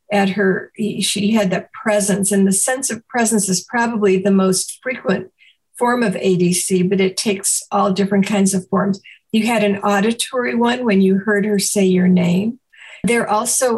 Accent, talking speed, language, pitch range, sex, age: American, 180 wpm, English, 190-220 Hz, female, 50-69